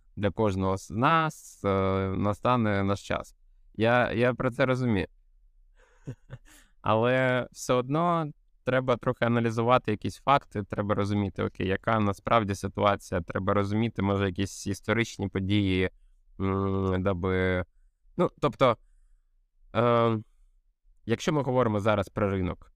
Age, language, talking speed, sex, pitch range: 20-39, Ukrainian, 115 wpm, male, 90-115 Hz